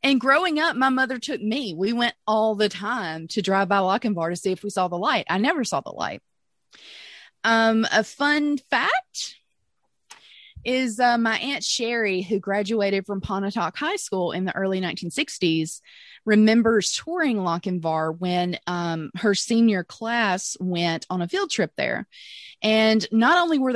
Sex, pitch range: female, 185-245 Hz